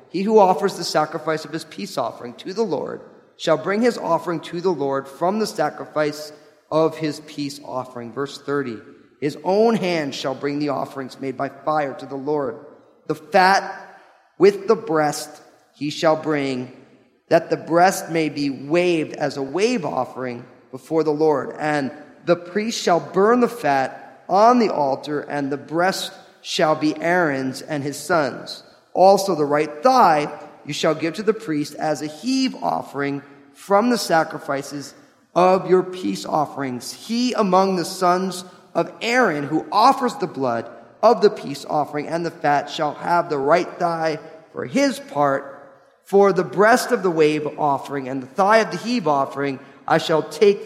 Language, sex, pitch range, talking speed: English, male, 140-185 Hz, 170 wpm